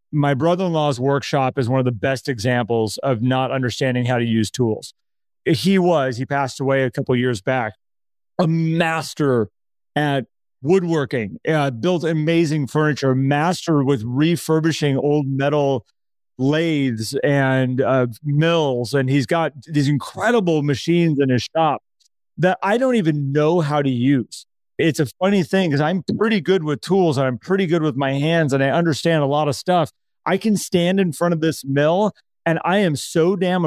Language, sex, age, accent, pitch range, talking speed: English, male, 30-49, American, 140-170 Hz, 175 wpm